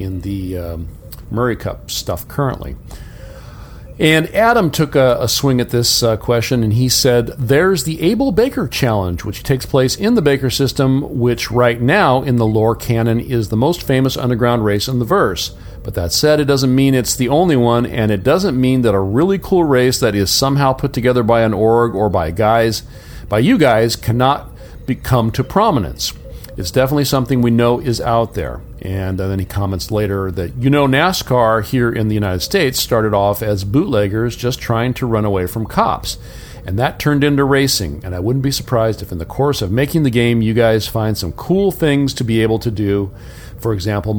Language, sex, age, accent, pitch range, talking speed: English, male, 40-59, American, 105-130 Hz, 200 wpm